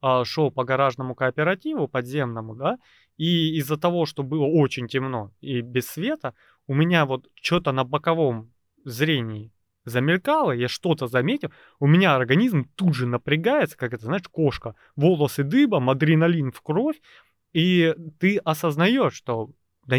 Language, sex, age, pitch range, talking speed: Russian, male, 20-39, 125-170 Hz, 140 wpm